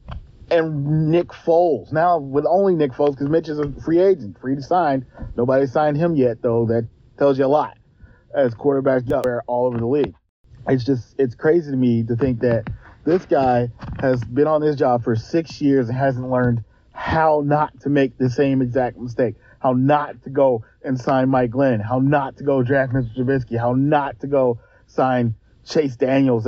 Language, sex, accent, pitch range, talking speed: English, male, American, 125-170 Hz, 195 wpm